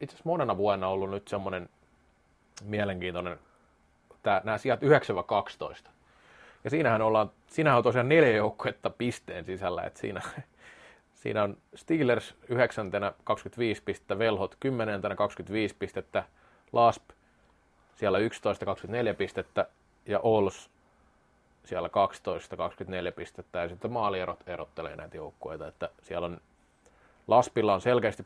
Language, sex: Finnish, male